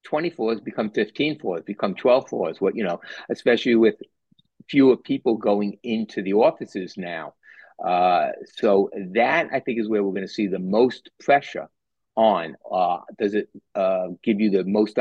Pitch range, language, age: 95-110 Hz, English, 50-69